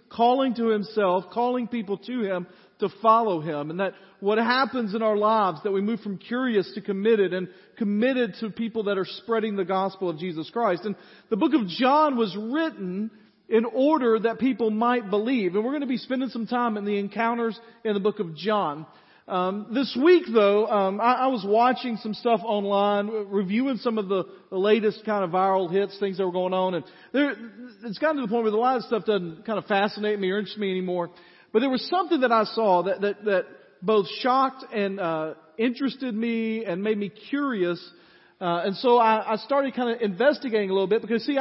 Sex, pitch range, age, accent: male, 195-235 Hz, 40-59, American